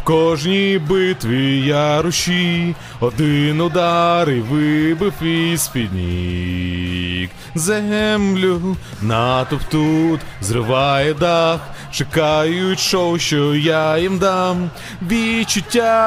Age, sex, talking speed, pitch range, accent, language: 20-39, male, 85 wpm, 145-210 Hz, native, Ukrainian